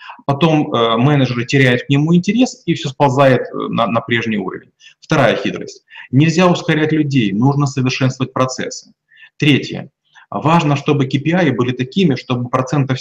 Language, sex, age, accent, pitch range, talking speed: Russian, male, 30-49, native, 130-165 Hz, 140 wpm